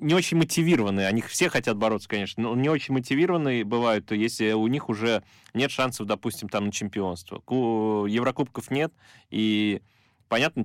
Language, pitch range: Russian, 105-125 Hz